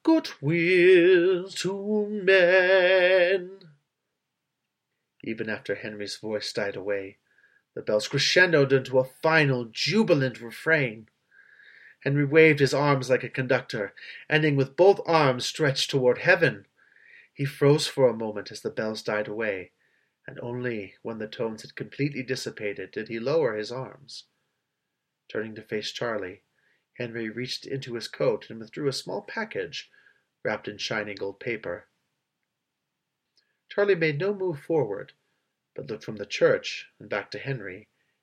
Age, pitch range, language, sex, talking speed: 30-49, 120-190 Hz, English, male, 140 wpm